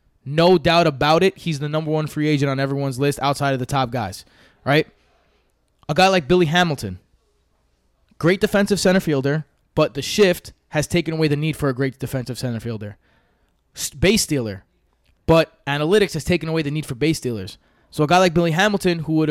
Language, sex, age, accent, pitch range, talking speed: English, male, 20-39, American, 125-160 Hz, 195 wpm